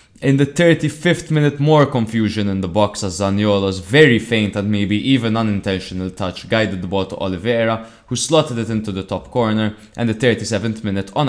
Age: 20-39